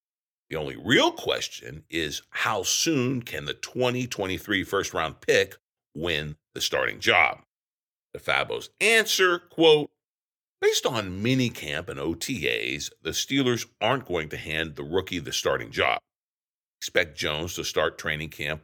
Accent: American